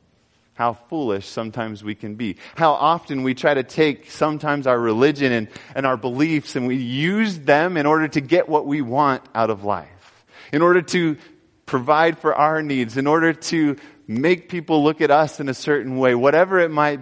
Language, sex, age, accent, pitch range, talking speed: English, male, 30-49, American, 110-155 Hz, 195 wpm